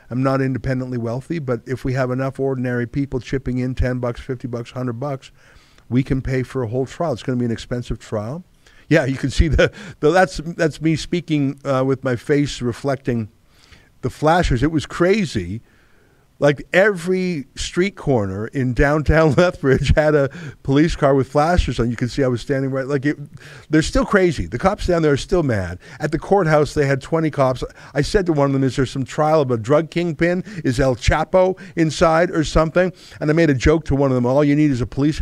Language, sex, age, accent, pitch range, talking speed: English, male, 50-69, American, 120-155 Hz, 220 wpm